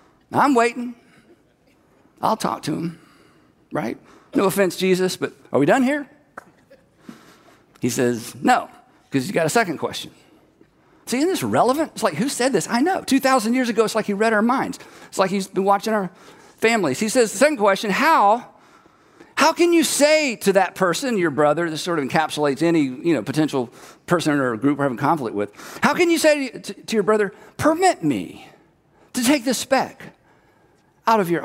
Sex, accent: male, American